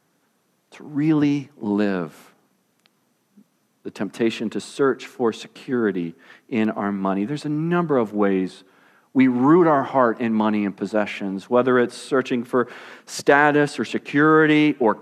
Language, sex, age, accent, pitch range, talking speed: English, male, 40-59, American, 115-175 Hz, 130 wpm